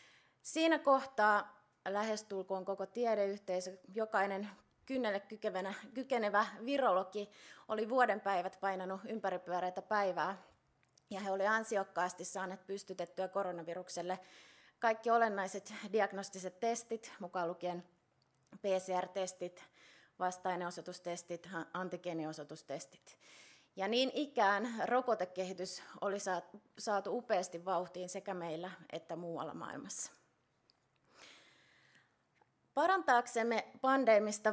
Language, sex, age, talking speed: Finnish, female, 20-39, 80 wpm